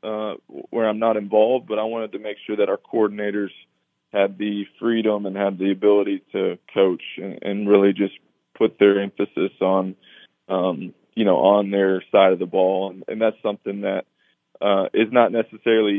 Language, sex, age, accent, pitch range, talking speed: English, male, 20-39, American, 100-105 Hz, 185 wpm